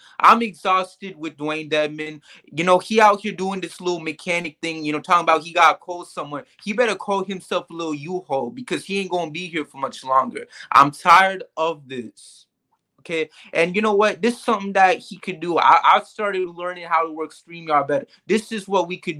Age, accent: 20-39, American